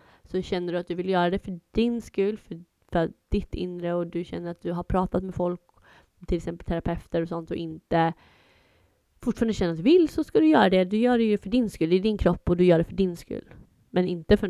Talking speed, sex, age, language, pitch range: 255 wpm, female, 20-39, Swedish, 175-200 Hz